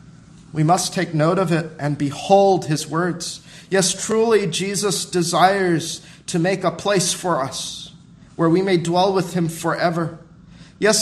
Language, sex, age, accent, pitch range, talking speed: English, male, 40-59, American, 165-195 Hz, 150 wpm